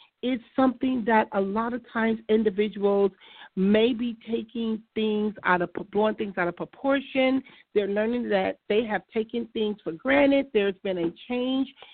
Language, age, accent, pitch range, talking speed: English, 50-69, American, 190-245 Hz, 145 wpm